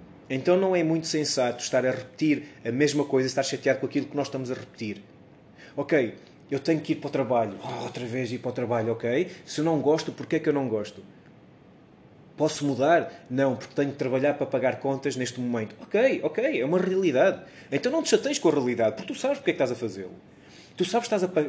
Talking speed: 230 wpm